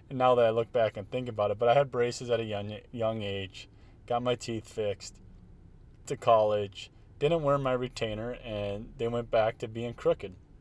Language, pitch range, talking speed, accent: English, 100-120 Hz, 200 wpm, American